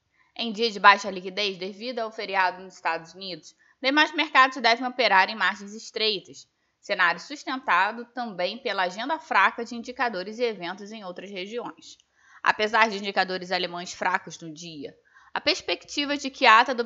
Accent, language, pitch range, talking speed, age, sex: Brazilian, Portuguese, 185-255 Hz, 160 wpm, 20-39, female